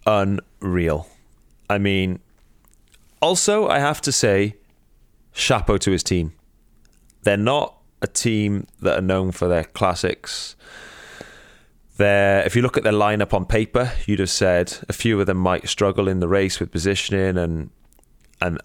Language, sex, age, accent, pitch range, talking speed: English, male, 30-49, British, 80-100 Hz, 150 wpm